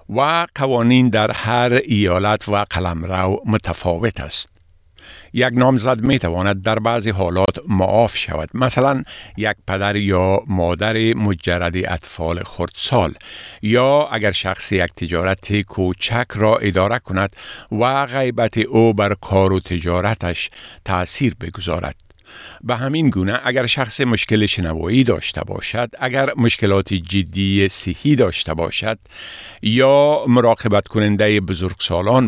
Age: 50-69